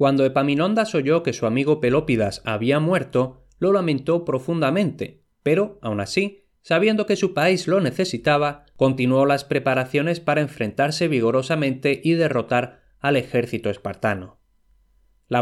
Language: Spanish